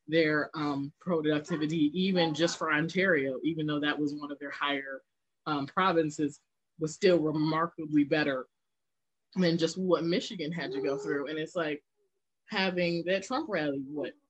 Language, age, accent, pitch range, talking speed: English, 20-39, American, 150-190 Hz, 155 wpm